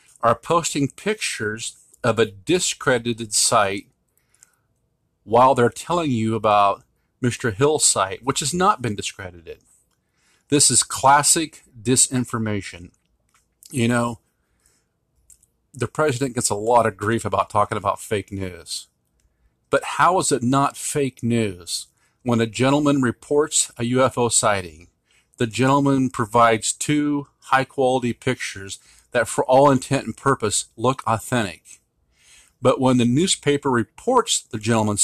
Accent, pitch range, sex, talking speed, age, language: American, 105-135 Hz, male, 125 wpm, 50-69, English